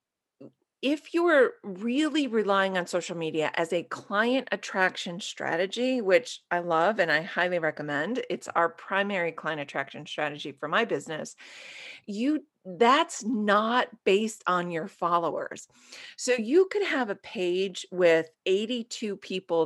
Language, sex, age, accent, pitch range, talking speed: English, female, 40-59, American, 175-230 Hz, 135 wpm